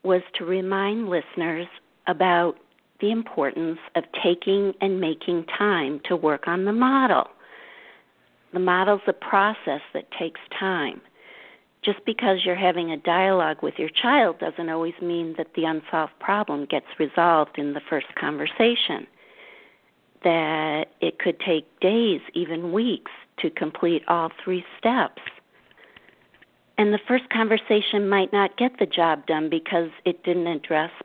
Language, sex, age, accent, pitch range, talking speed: English, female, 50-69, American, 160-200 Hz, 140 wpm